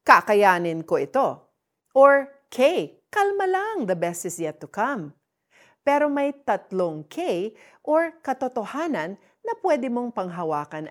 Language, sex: Filipino, female